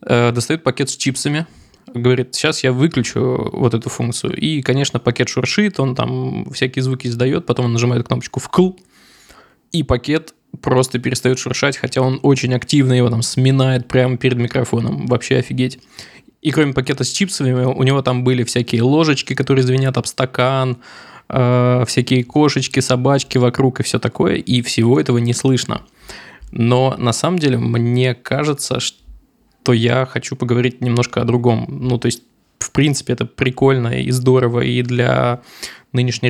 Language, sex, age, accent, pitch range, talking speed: Russian, male, 20-39, native, 120-130 Hz, 160 wpm